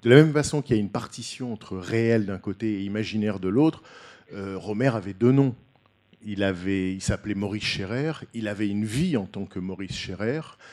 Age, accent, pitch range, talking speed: 50-69, French, 95-125 Hz, 205 wpm